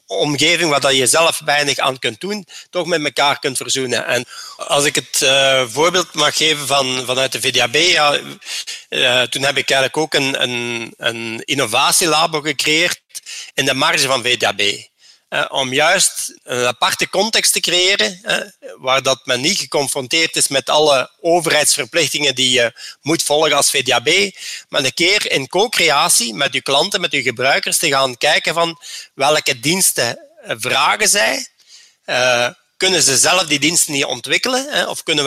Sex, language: male, Dutch